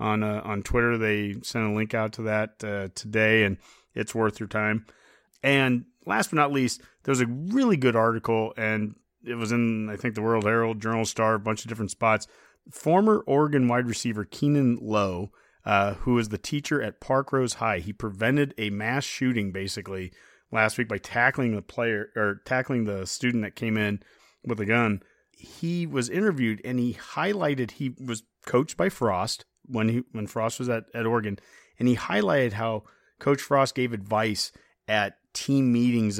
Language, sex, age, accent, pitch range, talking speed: English, male, 30-49, American, 110-130 Hz, 180 wpm